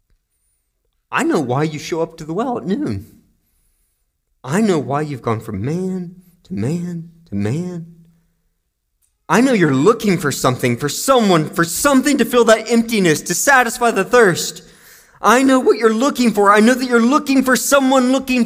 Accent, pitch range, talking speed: American, 150-230 Hz, 175 wpm